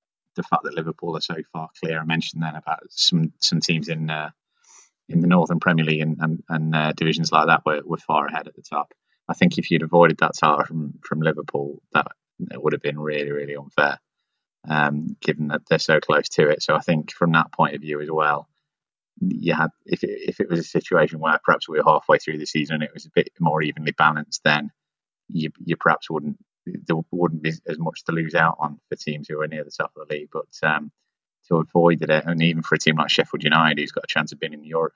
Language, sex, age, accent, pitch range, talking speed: English, male, 20-39, British, 75-80 Hz, 240 wpm